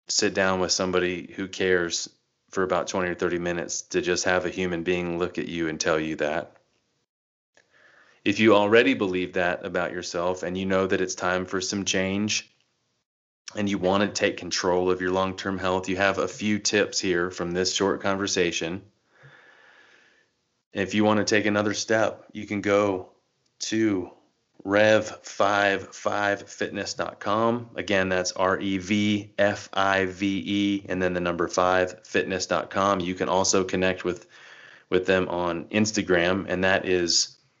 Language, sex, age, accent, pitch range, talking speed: English, male, 30-49, American, 90-100 Hz, 150 wpm